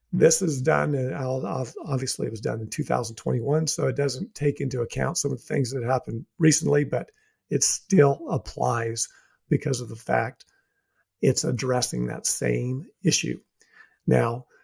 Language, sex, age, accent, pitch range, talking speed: English, male, 50-69, American, 125-155 Hz, 150 wpm